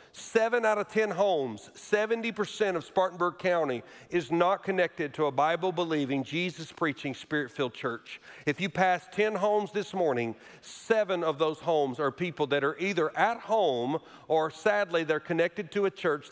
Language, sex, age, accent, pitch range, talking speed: English, male, 50-69, American, 145-180 Hz, 160 wpm